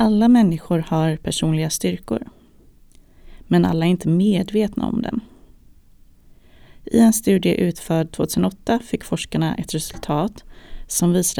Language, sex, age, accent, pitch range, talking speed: Swedish, female, 30-49, native, 155-210 Hz, 120 wpm